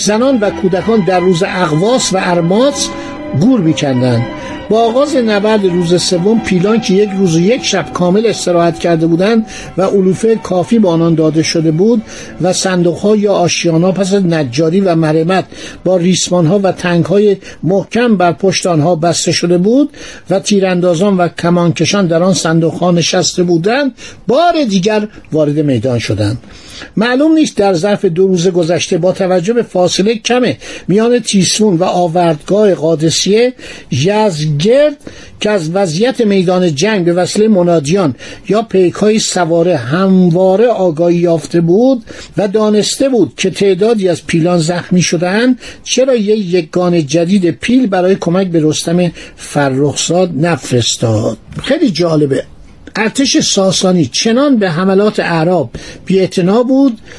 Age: 60-79